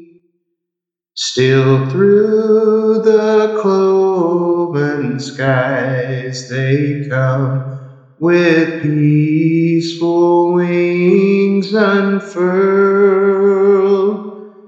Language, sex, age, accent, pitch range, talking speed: English, male, 30-49, American, 135-190 Hz, 45 wpm